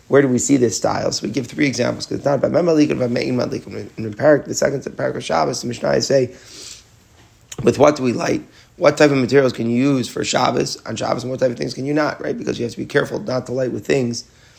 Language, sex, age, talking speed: English, male, 30-49, 265 wpm